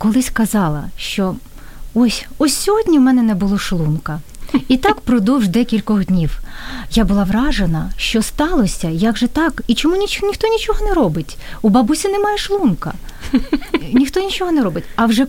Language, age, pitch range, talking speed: Ukrainian, 30-49, 185-260 Hz, 160 wpm